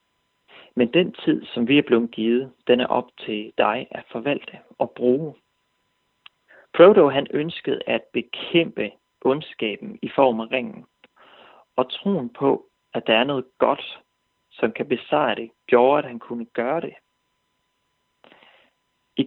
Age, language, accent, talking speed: 40-59, Danish, native, 140 wpm